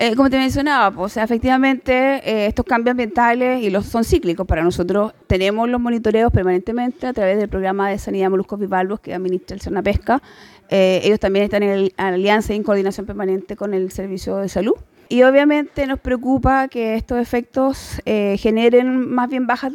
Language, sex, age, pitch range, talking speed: Spanish, female, 30-49, 205-245 Hz, 195 wpm